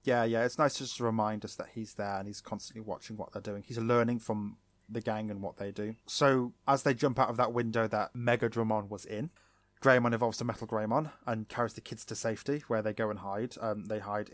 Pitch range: 105-120 Hz